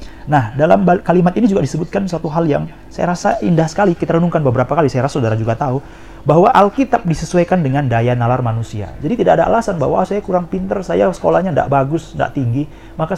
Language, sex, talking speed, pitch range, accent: Indonesian, male, 200 wpm, 125-165 Hz, native